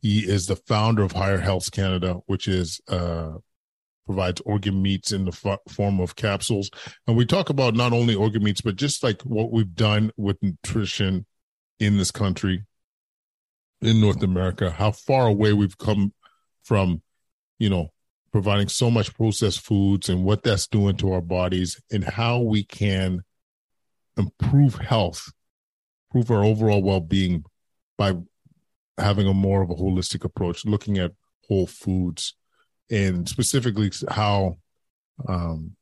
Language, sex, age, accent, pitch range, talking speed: English, male, 40-59, American, 90-105 Hz, 145 wpm